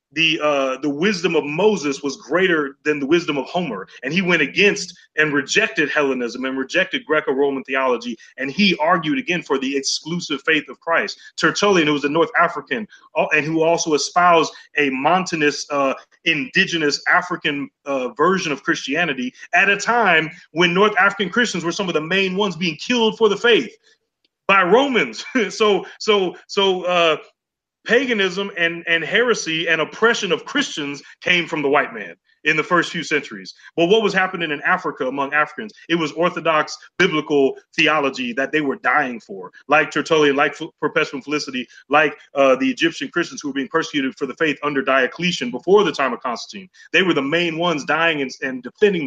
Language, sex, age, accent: English, male, 30-49, American